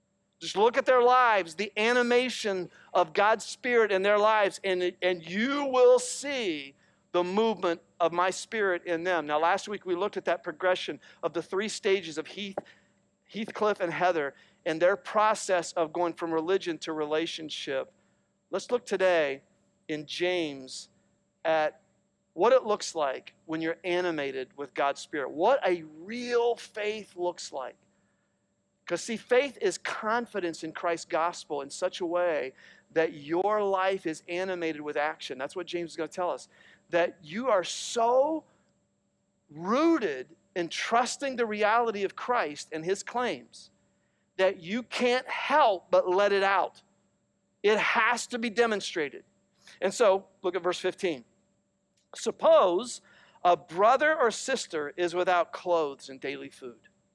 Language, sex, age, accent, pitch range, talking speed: English, male, 50-69, American, 170-225 Hz, 150 wpm